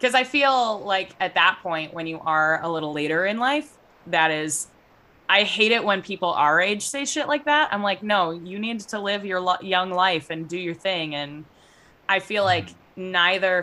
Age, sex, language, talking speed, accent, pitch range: 20-39, female, English, 205 wpm, American, 155-205 Hz